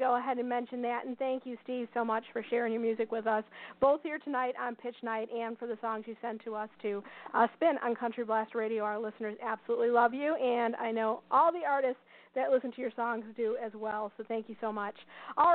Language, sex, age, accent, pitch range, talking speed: English, female, 40-59, American, 245-320 Hz, 245 wpm